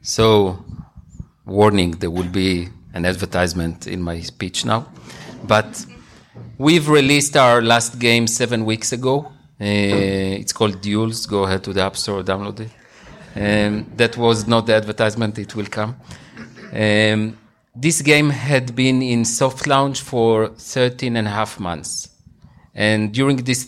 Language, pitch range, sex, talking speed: English, 105-125 Hz, male, 145 wpm